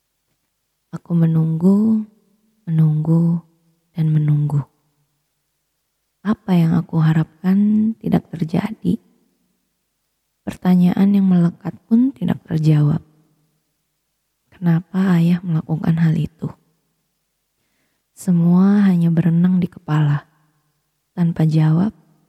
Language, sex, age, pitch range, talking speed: Indonesian, female, 20-39, 160-185 Hz, 80 wpm